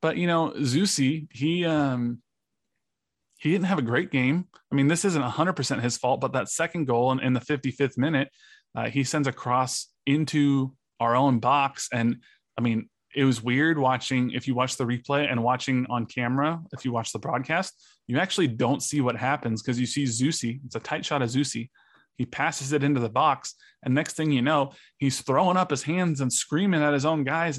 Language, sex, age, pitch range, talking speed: English, male, 20-39, 125-150 Hz, 210 wpm